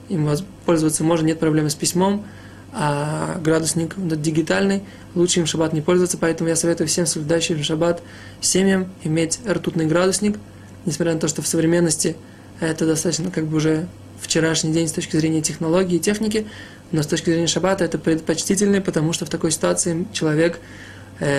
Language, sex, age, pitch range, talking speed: Russian, male, 20-39, 155-170 Hz, 165 wpm